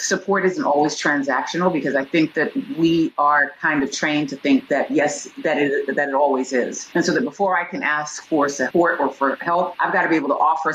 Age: 40-59